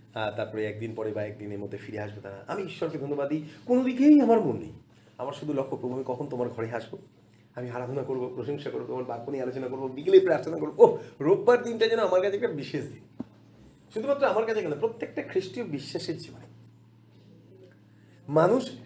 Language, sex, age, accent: Bengali, male, 30-49, native